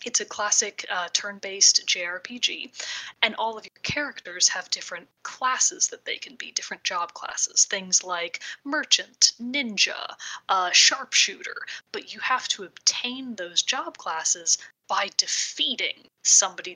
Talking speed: 135 wpm